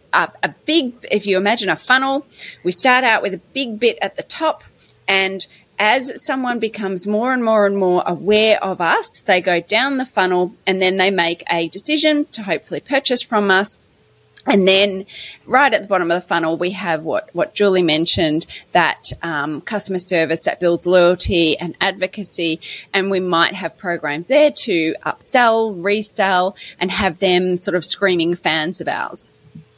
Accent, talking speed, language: Australian, 175 wpm, English